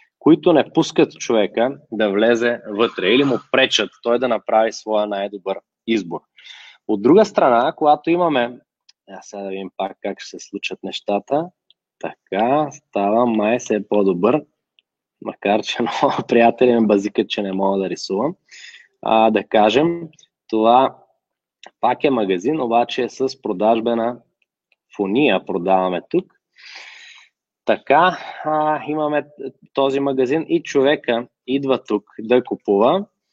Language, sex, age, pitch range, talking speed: Bulgarian, male, 20-39, 105-140 Hz, 130 wpm